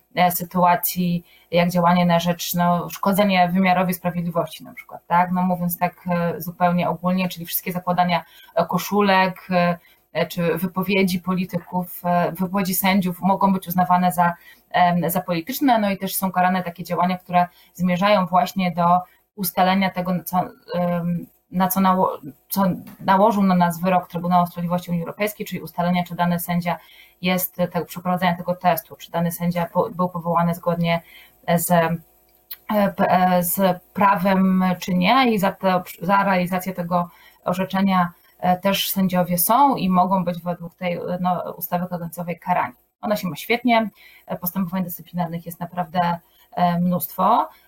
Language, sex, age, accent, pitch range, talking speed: Polish, female, 20-39, native, 175-185 Hz, 135 wpm